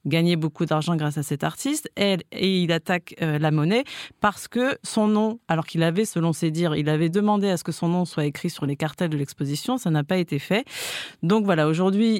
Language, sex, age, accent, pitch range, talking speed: French, female, 30-49, French, 165-205 Hz, 220 wpm